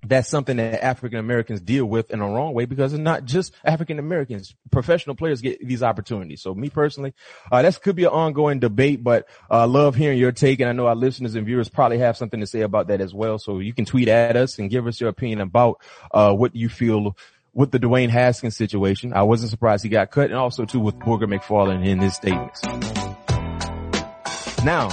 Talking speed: 215 wpm